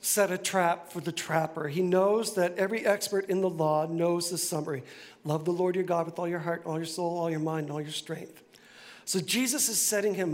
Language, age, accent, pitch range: English, 50-69, American, 170-210 Hz